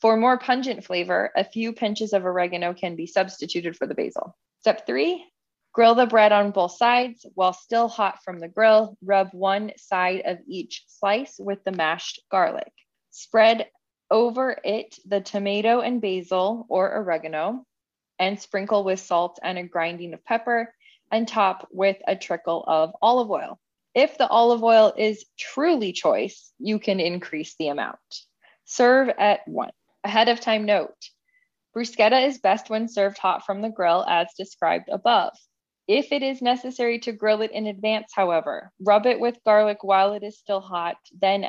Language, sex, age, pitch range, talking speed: English, female, 20-39, 180-230 Hz, 170 wpm